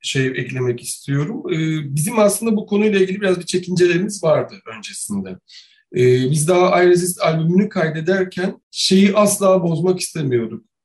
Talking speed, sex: 120 wpm, male